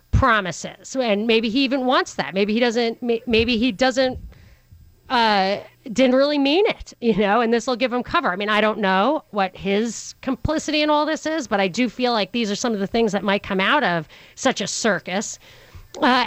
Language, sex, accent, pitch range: English, female, American, 220-280 Hz